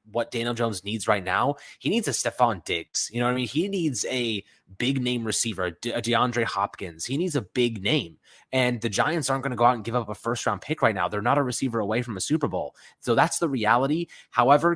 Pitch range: 100-125 Hz